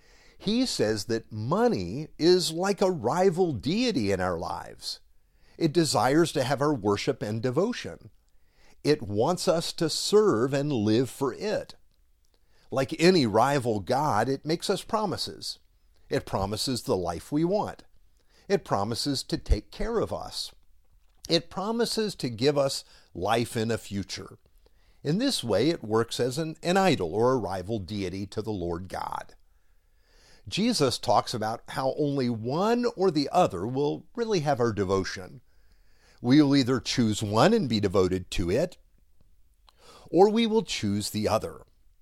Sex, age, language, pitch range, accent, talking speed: male, 50-69, English, 100-170 Hz, American, 150 wpm